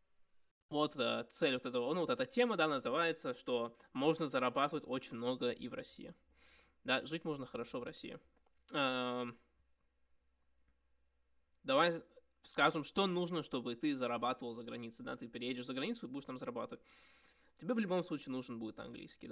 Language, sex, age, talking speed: Russian, male, 20-39, 150 wpm